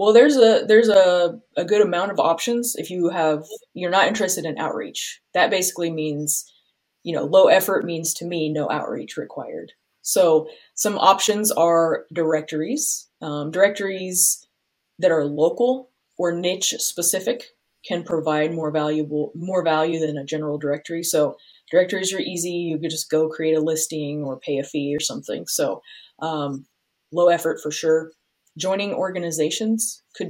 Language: English